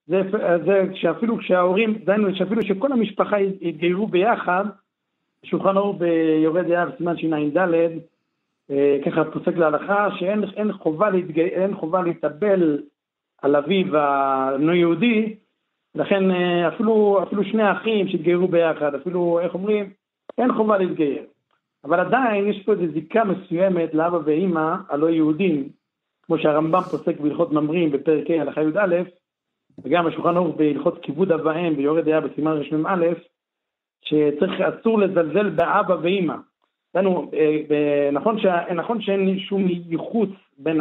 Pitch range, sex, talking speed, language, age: 155-195 Hz, male, 125 wpm, Hebrew, 60-79